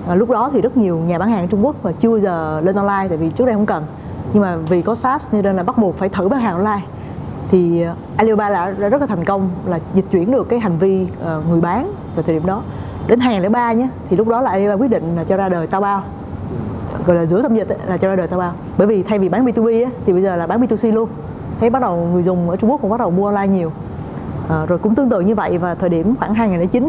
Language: Vietnamese